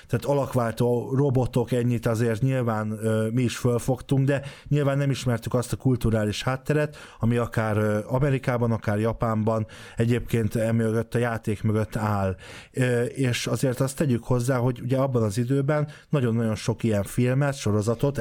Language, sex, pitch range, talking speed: Hungarian, male, 115-135 Hz, 150 wpm